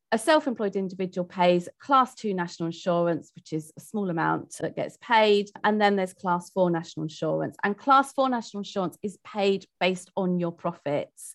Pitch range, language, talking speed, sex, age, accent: 175-220 Hz, English, 180 wpm, female, 30-49, British